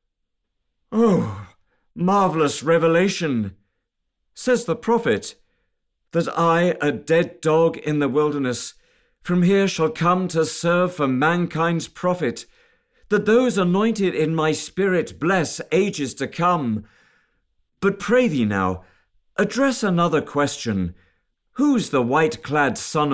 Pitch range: 155-215 Hz